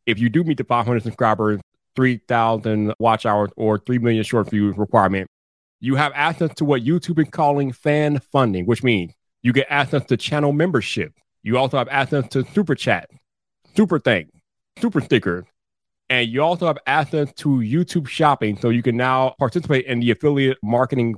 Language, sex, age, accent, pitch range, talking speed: English, male, 30-49, American, 115-145 Hz, 175 wpm